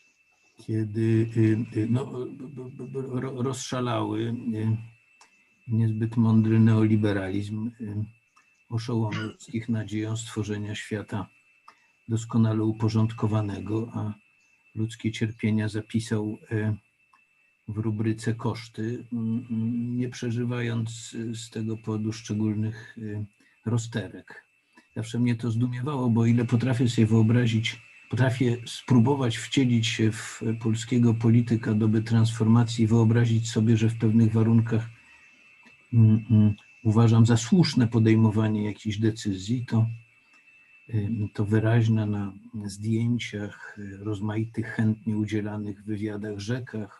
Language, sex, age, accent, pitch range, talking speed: Polish, male, 50-69, native, 110-115 Hz, 90 wpm